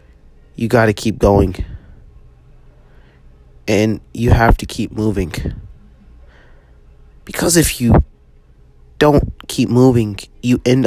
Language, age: English, 20-39